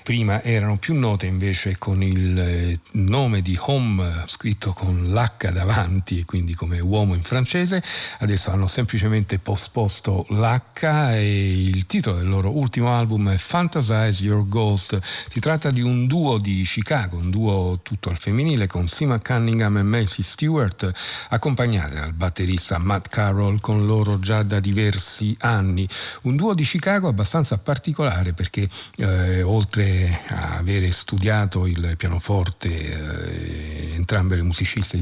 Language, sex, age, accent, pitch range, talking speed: Italian, male, 50-69, native, 95-115 Hz, 140 wpm